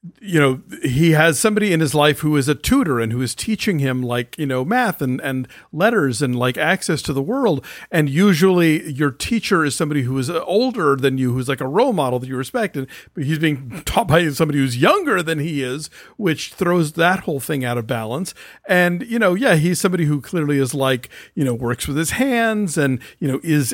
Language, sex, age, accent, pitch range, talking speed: English, male, 50-69, American, 135-180 Hz, 225 wpm